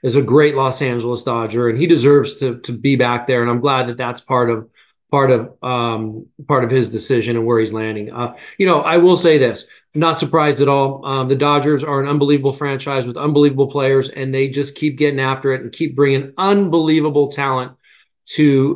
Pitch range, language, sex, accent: 130-155 Hz, English, male, American